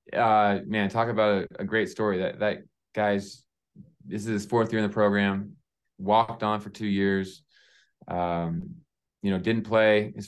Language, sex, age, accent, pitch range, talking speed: English, male, 20-39, American, 95-110 Hz, 175 wpm